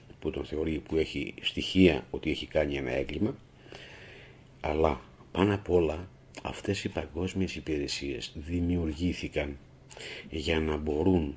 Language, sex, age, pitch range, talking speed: Greek, male, 50-69, 75-95 Hz, 120 wpm